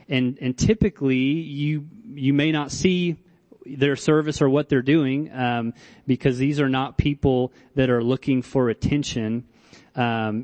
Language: English